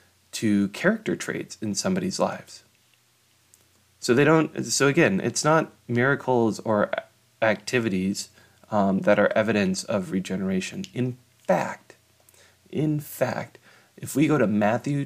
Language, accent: English, American